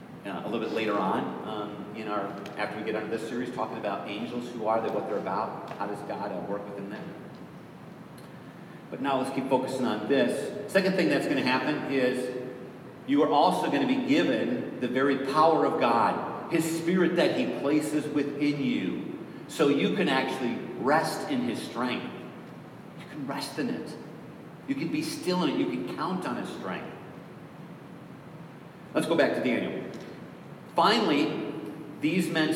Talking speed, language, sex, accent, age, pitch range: 180 wpm, English, male, American, 40-59, 125-165 Hz